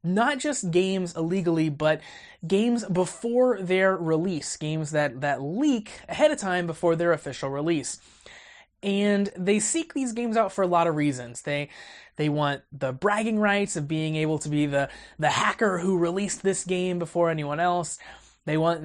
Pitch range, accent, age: 155-210 Hz, American, 20-39